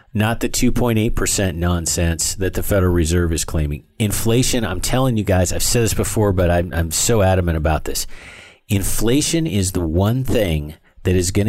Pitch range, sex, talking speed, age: 85-110 Hz, male, 180 wpm, 40-59